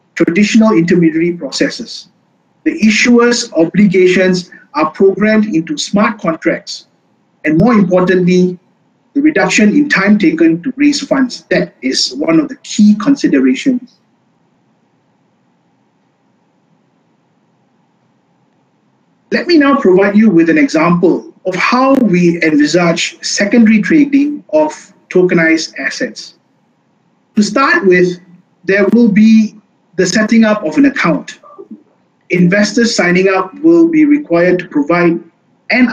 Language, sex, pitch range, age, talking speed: English, male, 180-270 Hz, 50-69, 110 wpm